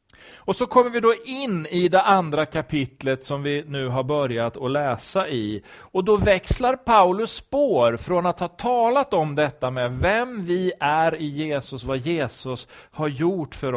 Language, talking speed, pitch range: Swedish, 175 wpm, 125-190 Hz